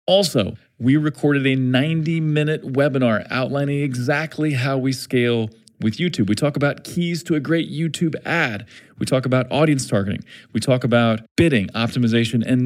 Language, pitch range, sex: English, 105-140 Hz, male